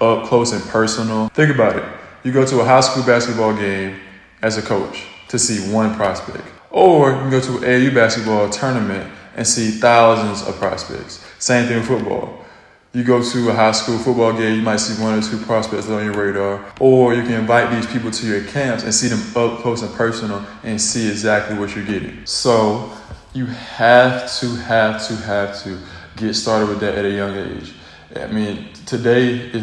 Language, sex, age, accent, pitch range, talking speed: English, male, 20-39, American, 100-115 Hz, 205 wpm